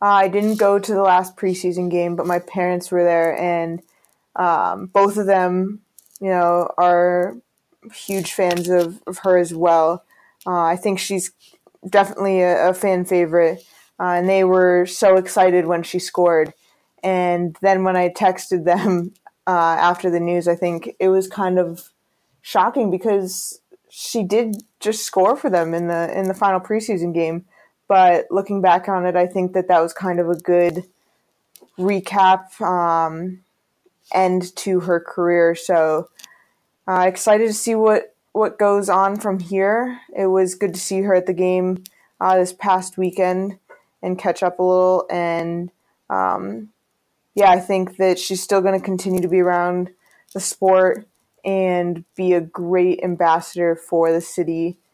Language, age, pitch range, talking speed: English, 20-39, 175-195 Hz, 165 wpm